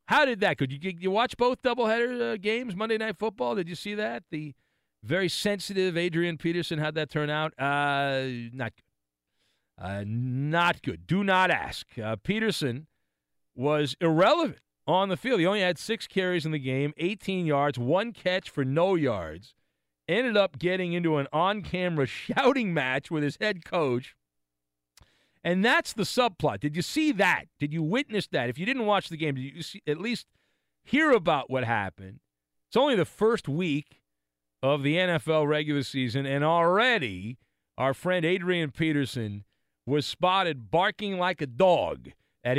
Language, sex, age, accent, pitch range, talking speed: English, male, 40-59, American, 130-190 Hz, 165 wpm